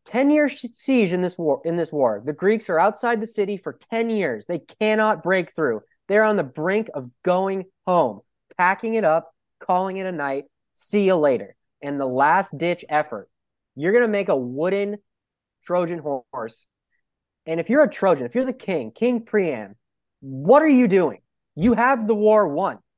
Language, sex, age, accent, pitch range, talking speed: English, male, 20-39, American, 150-215 Hz, 190 wpm